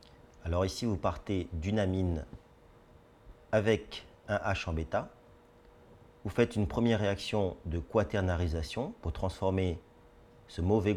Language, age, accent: French, 40-59, French